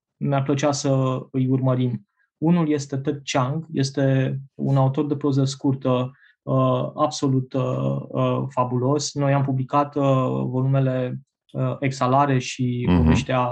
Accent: native